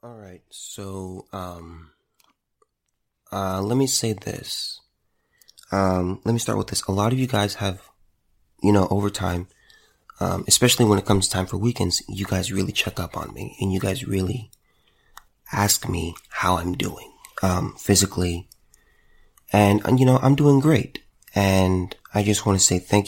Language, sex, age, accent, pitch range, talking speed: English, male, 20-39, American, 95-115 Hz, 170 wpm